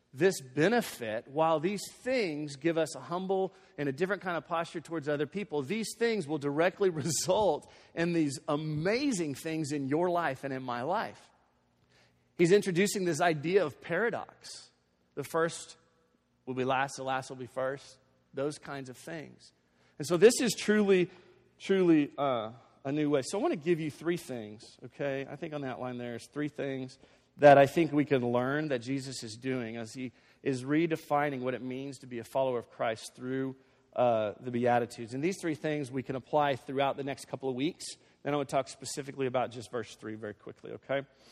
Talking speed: 200 wpm